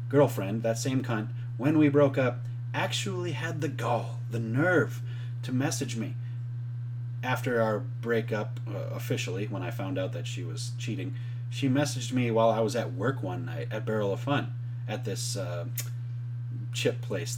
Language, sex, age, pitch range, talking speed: English, male, 30-49, 120-130 Hz, 170 wpm